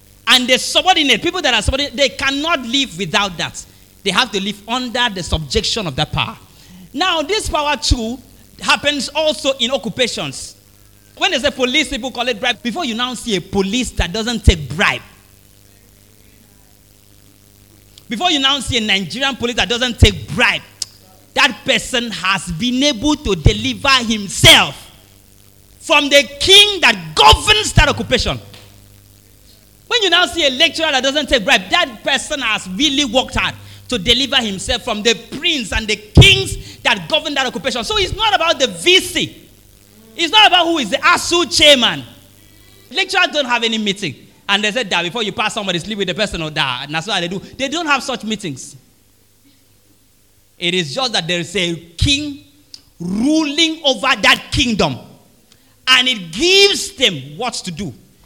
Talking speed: 170 wpm